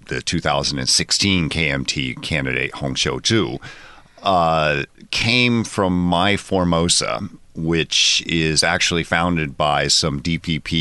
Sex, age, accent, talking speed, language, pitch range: male, 50-69, American, 100 wpm, English, 75-90 Hz